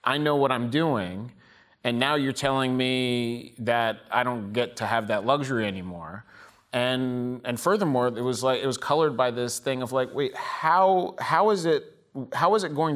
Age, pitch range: 30-49, 115-140 Hz